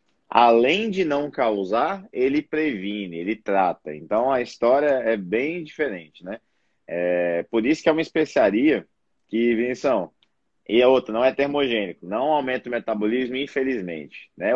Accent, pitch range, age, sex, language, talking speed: Brazilian, 100-140 Hz, 20-39, male, Portuguese, 150 wpm